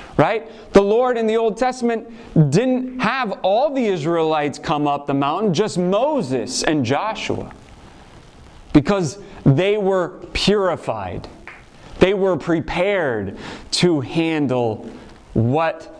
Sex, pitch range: male, 160-215 Hz